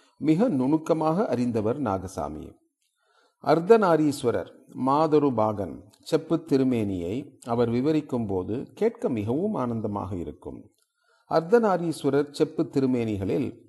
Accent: native